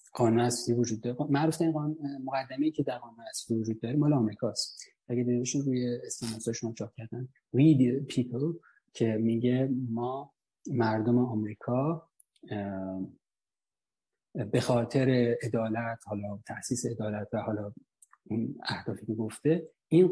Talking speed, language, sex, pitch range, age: 115 wpm, Persian, male, 115-155 Hz, 30-49